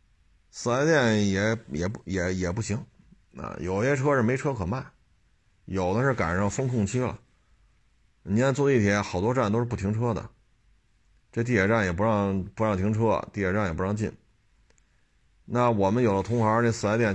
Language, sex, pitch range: Chinese, male, 95-115 Hz